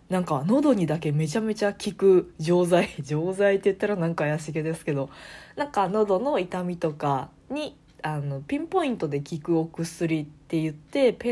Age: 20-39